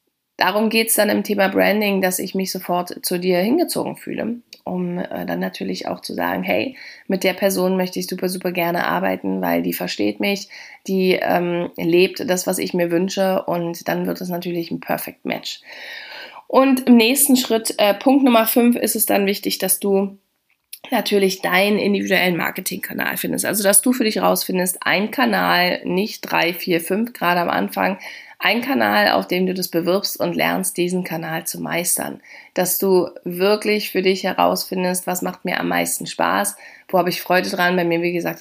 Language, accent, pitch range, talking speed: German, German, 170-195 Hz, 185 wpm